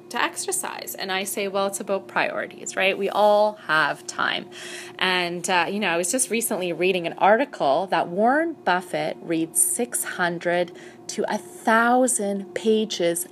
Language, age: English, 20-39